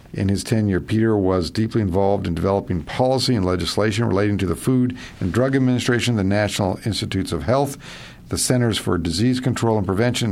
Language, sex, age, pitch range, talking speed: English, male, 50-69, 100-125 Hz, 180 wpm